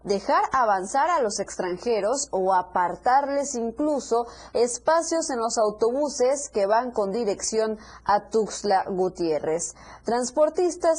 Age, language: 30-49, Spanish